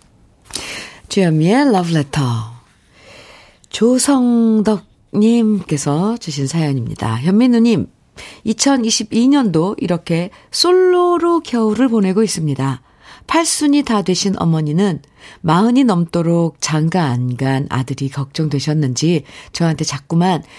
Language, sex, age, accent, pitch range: Korean, female, 50-69, native, 165-225 Hz